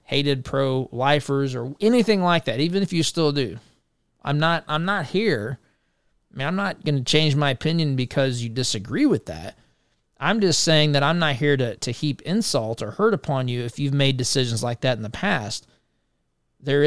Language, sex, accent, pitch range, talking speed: English, male, American, 125-165 Hz, 195 wpm